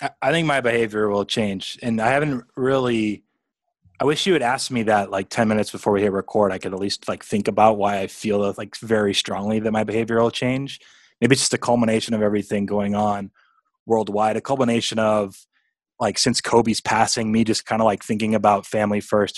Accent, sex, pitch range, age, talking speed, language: American, male, 105-115 Hz, 20-39, 210 wpm, English